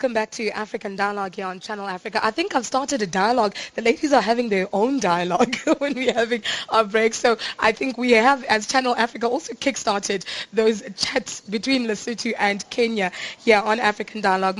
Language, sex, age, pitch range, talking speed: English, female, 20-39, 195-240 Hz, 195 wpm